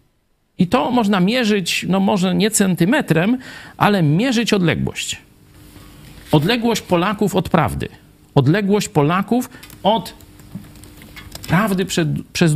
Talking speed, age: 95 wpm, 50-69